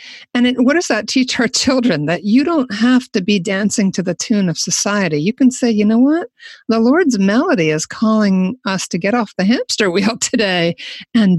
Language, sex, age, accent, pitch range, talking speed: English, female, 50-69, American, 175-230 Hz, 210 wpm